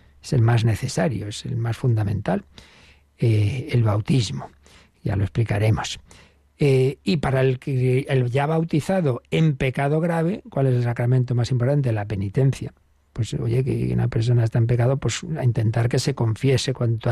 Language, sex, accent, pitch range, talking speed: Spanish, male, Spanish, 120-145 Hz, 165 wpm